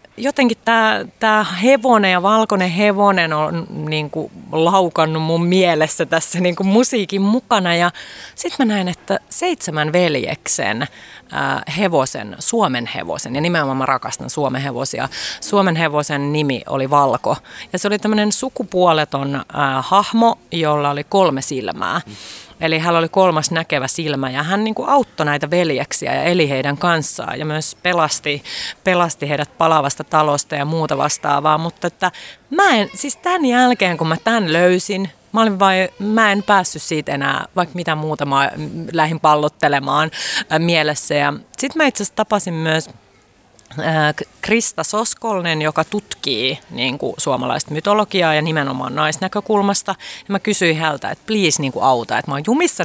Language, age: Finnish, 30-49